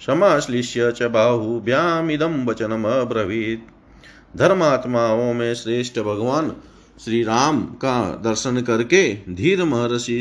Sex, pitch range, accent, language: male, 120-160 Hz, native, Hindi